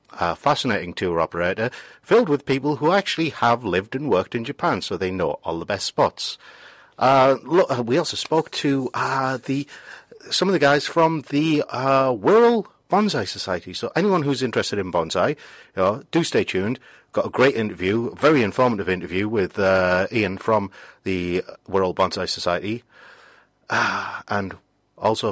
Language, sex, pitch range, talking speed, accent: English, male, 95-120 Hz, 165 wpm, British